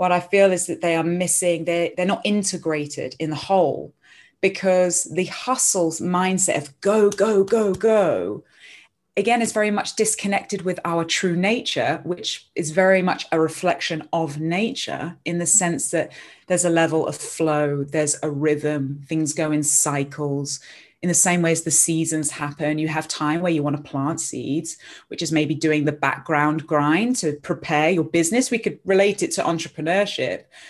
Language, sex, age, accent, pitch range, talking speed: English, female, 20-39, British, 160-210 Hz, 175 wpm